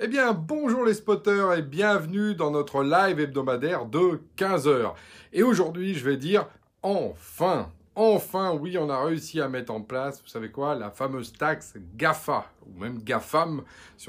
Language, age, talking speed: French, 30-49, 165 wpm